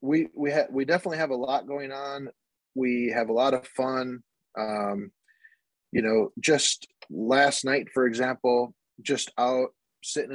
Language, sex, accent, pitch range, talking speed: English, male, American, 120-145 Hz, 155 wpm